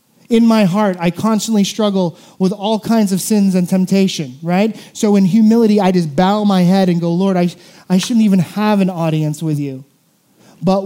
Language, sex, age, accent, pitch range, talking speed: English, male, 30-49, American, 165-200 Hz, 200 wpm